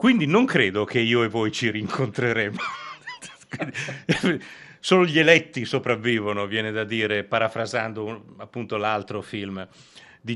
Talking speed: 125 wpm